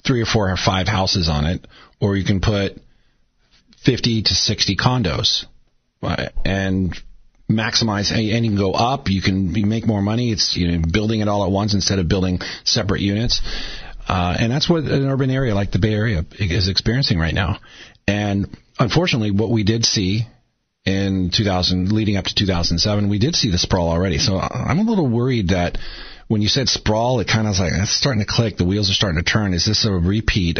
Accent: American